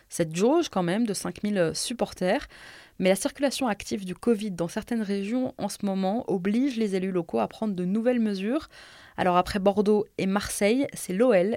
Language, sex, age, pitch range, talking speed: French, female, 20-39, 190-265 Hz, 180 wpm